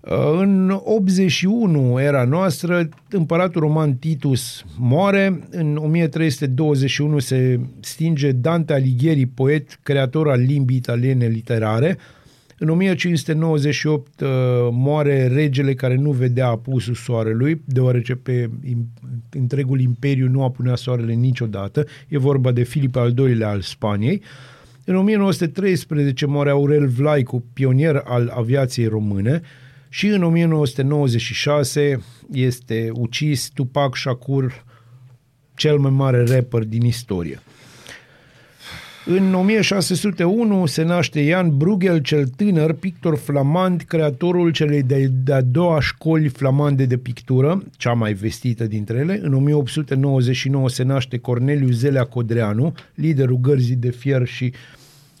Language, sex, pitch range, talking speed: Romanian, male, 125-155 Hz, 110 wpm